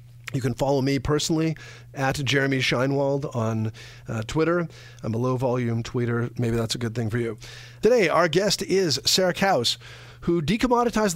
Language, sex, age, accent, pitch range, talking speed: English, male, 40-59, American, 120-150 Hz, 160 wpm